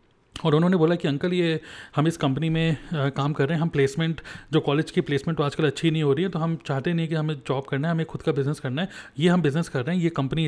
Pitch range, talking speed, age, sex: 140-180 Hz, 290 wpm, 30-49, male